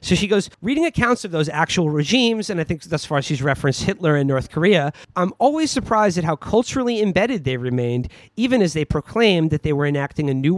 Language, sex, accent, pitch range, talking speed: English, male, American, 150-215 Hz, 220 wpm